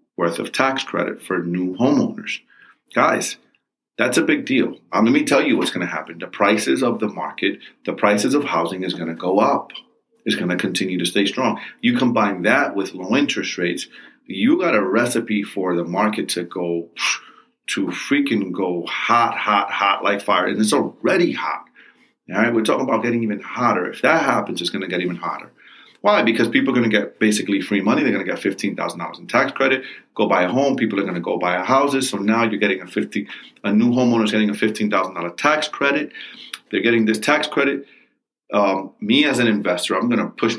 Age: 40-59